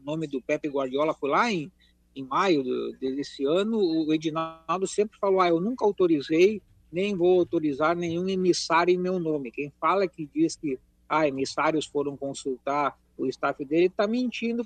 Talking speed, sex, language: 170 wpm, male, Portuguese